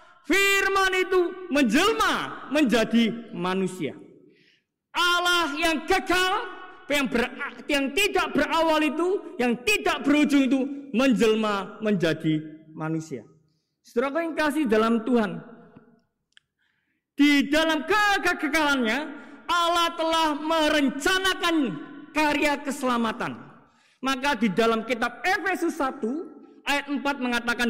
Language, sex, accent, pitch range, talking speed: Indonesian, male, native, 235-340 Hz, 90 wpm